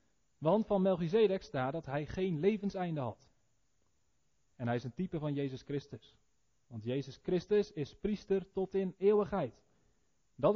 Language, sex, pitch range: Dutch, male, 120-190 Hz